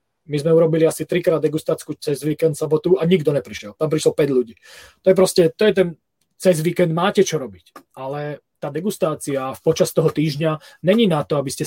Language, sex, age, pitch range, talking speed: Czech, male, 20-39, 140-160 Hz, 200 wpm